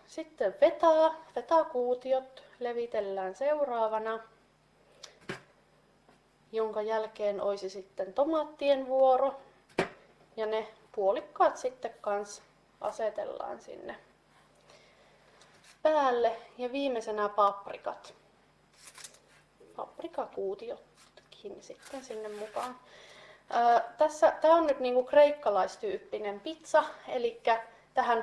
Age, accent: 30-49, native